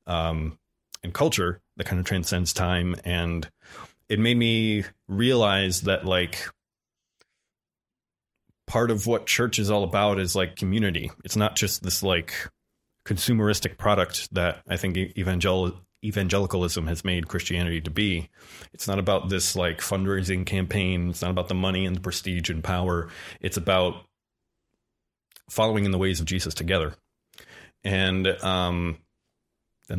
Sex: male